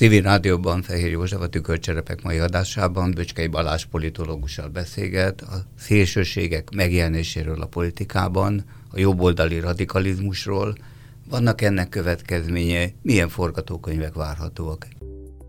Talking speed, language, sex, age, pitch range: 100 wpm, Hungarian, male, 50-69, 80-105 Hz